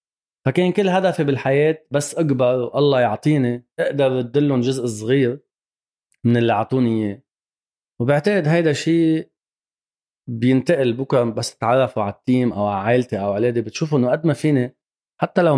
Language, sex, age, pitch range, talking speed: Arabic, male, 30-49, 115-140 Hz, 145 wpm